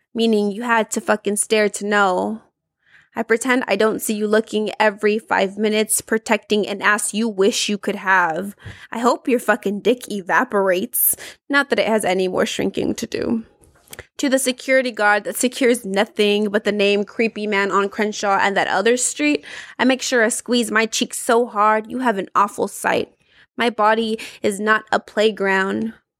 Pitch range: 205-235 Hz